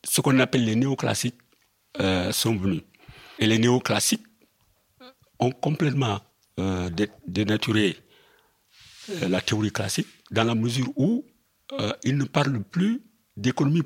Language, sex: French, male